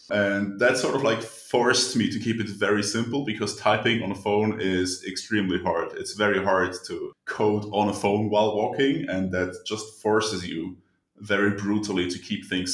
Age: 20-39